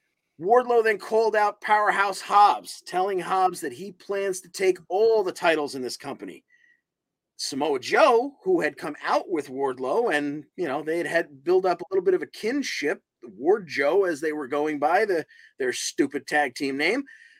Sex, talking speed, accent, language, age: male, 185 wpm, American, English, 30-49